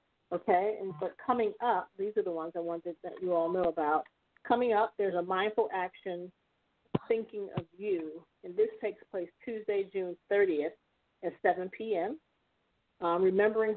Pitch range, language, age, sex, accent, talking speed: 170-205 Hz, English, 40-59, female, American, 160 wpm